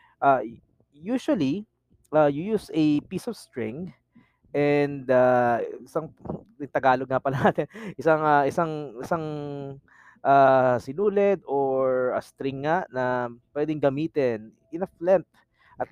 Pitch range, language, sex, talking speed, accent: 125-160 Hz, Filipino, male, 115 wpm, native